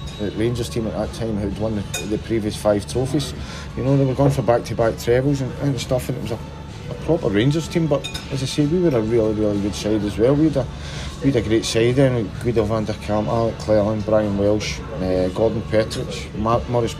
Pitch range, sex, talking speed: 105-135 Hz, male, 230 wpm